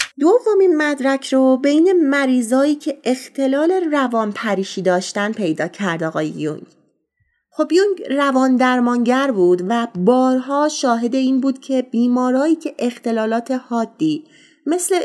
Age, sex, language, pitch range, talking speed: 30-49, female, Persian, 220-295 Hz, 120 wpm